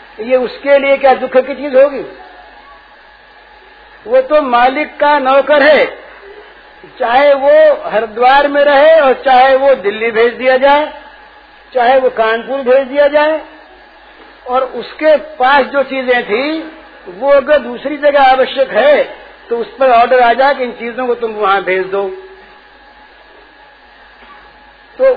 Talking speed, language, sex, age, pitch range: 140 wpm, Hindi, male, 60-79, 255-300 Hz